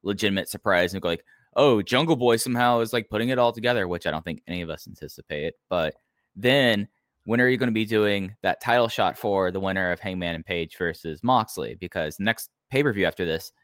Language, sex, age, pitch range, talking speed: English, male, 10-29, 90-110 Hz, 215 wpm